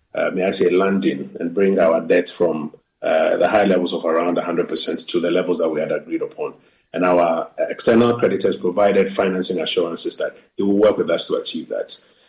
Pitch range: 95-125 Hz